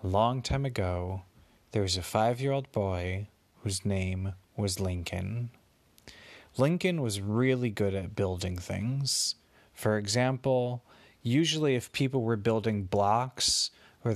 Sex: male